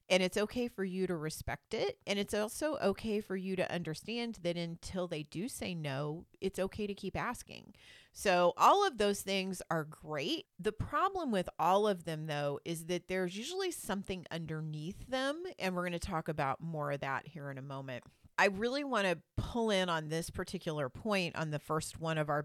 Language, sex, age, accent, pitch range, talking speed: English, female, 40-59, American, 155-205 Hz, 200 wpm